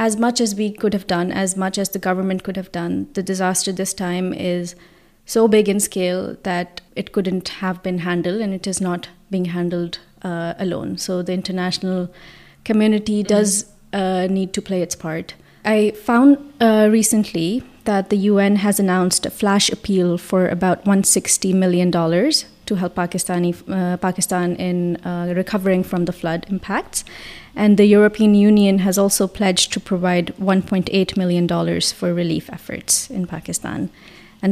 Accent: Indian